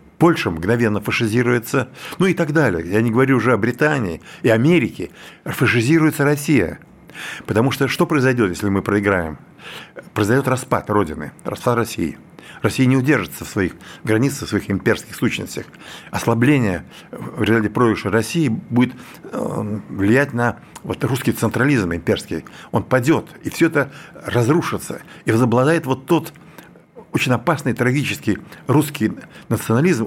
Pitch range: 100-135 Hz